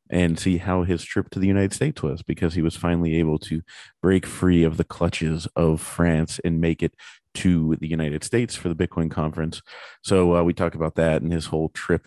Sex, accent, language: male, American, English